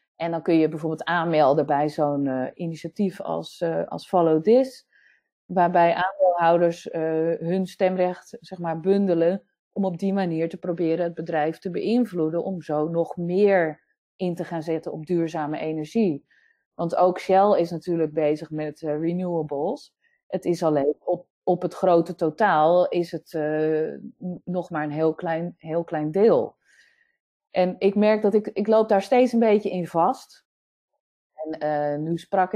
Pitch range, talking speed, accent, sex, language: 160-200 Hz, 165 wpm, Dutch, female, Dutch